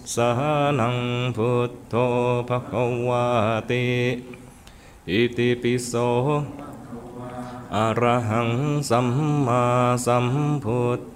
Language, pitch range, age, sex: Thai, 120-125 Hz, 30-49, male